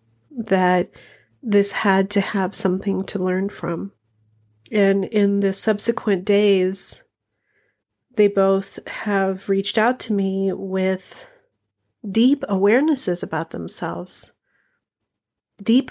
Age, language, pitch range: 40-59, English, 195-235 Hz